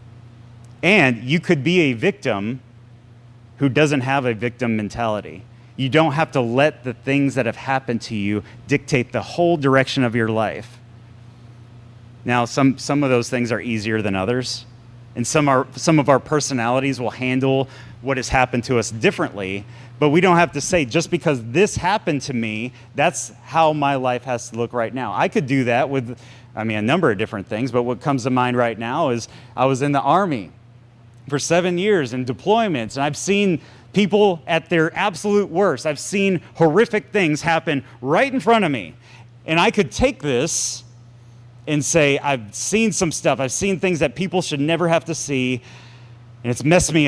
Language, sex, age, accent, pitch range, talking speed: English, male, 30-49, American, 120-155 Hz, 190 wpm